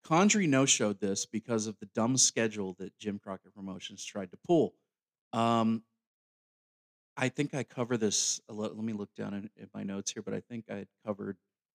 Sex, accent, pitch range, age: male, American, 100-125 Hz, 30-49